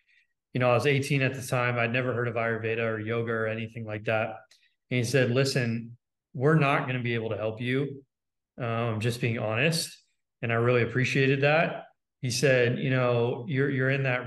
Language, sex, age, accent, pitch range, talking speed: English, male, 30-49, American, 115-140 Hz, 205 wpm